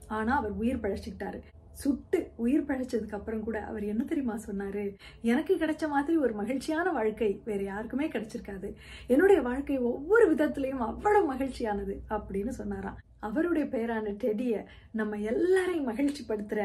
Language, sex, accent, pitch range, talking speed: Tamil, female, native, 215-300 Hz, 60 wpm